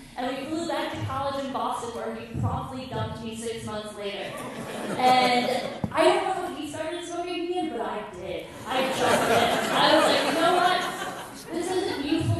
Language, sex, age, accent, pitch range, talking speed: English, female, 10-29, American, 215-270 Hz, 195 wpm